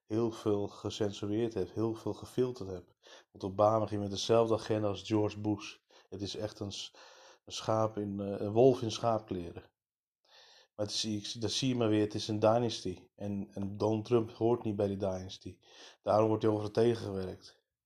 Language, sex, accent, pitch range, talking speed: Dutch, male, Dutch, 100-110 Hz, 180 wpm